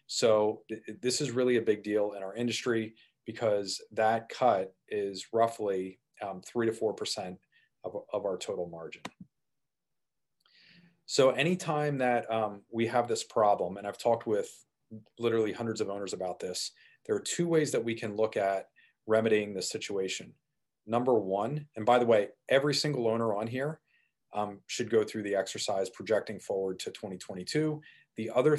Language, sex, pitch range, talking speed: English, male, 105-135 Hz, 165 wpm